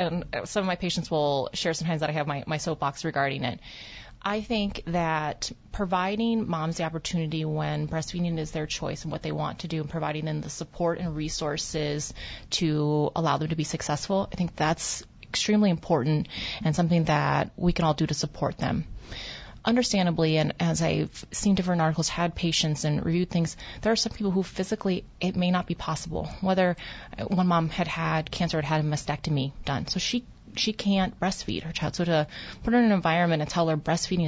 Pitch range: 150-175 Hz